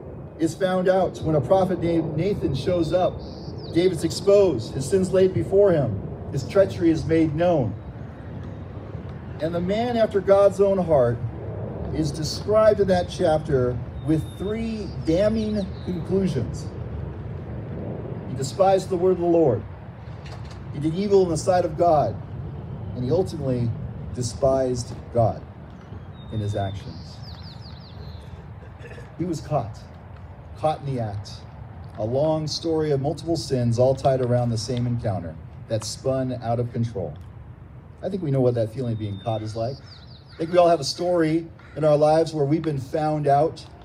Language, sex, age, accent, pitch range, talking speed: English, male, 40-59, American, 115-165 Hz, 155 wpm